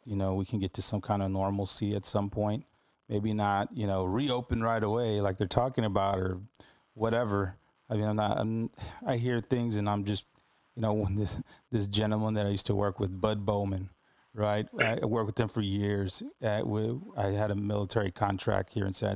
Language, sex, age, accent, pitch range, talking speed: English, male, 30-49, American, 100-115 Hz, 215 wpm